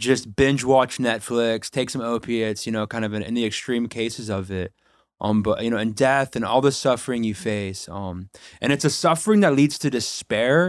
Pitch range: 115-145 Hz